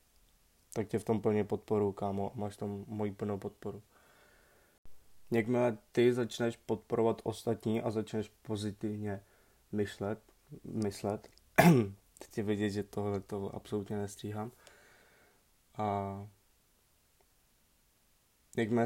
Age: 20-39